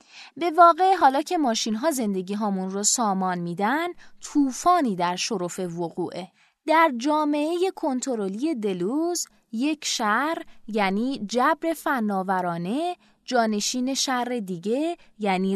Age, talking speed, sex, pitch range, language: 20-39, 100 wpm, female, 210-290 Hz, Persian